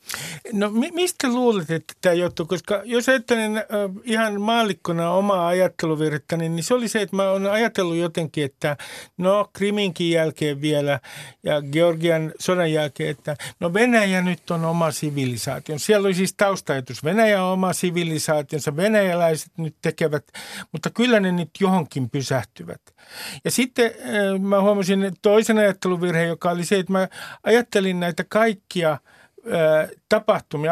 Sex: male